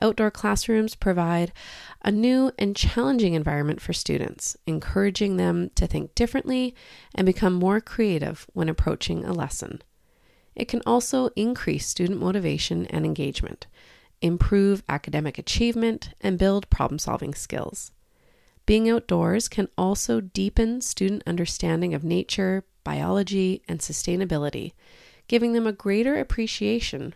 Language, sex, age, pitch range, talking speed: English, female, 30-49, 165-225 Hz, 120 wpm